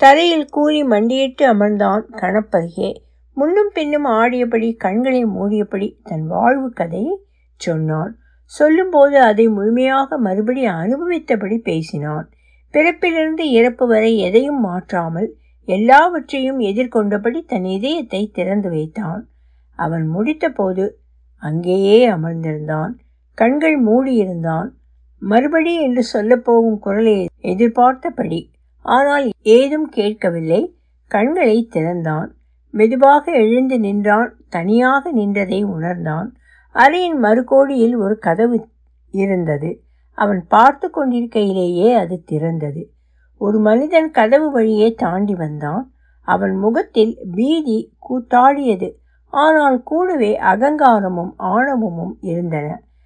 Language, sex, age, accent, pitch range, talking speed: Tamil, female, 60-79, native, 180-260 Hz, 90 wpm